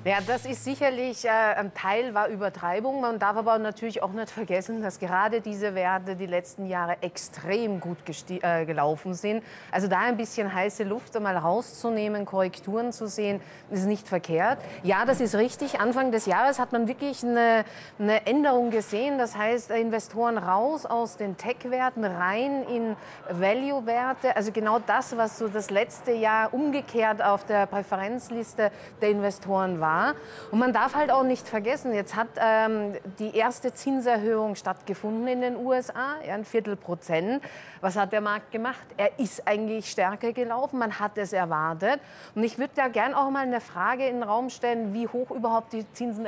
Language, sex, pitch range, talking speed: German, female, 195-240 Hz, 170 wpm